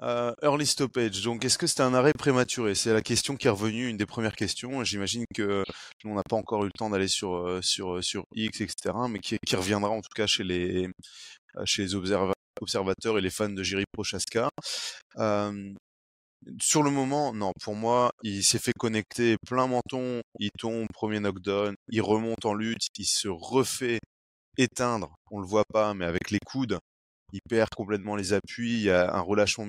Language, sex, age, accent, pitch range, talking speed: French, male, 20-39, French, 95-115 Hz, 200 wpm